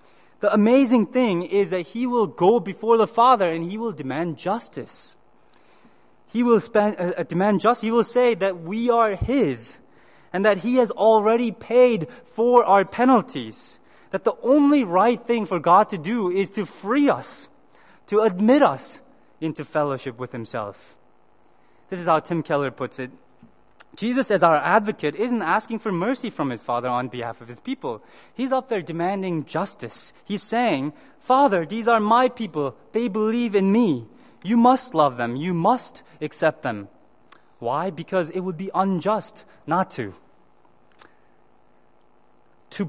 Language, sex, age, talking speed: English, male, 20-39, 160 wpm